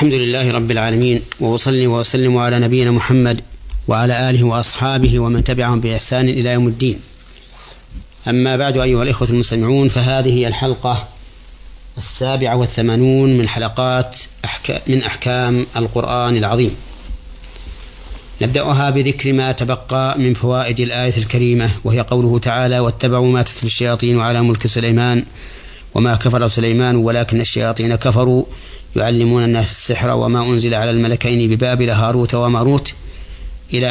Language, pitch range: Arabic, 115-125 Hz